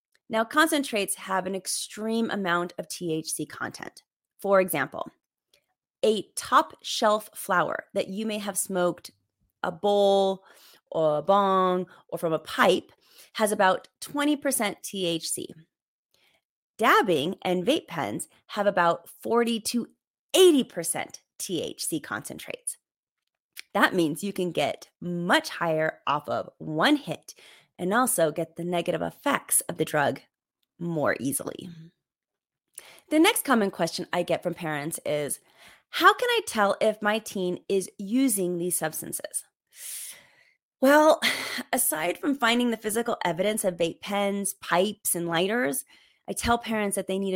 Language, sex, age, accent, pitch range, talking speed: English, female, 30-49, American, 175-235 Hz, 135 wpm